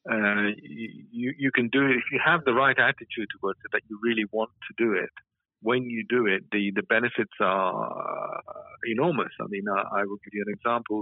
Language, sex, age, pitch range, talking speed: English, male, 50-69, 105-115 Hz, 210 wpm